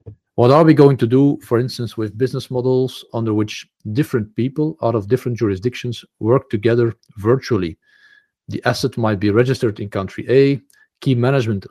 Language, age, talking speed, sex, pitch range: English, 50-69, 165 wpm, male, 110-145 Hz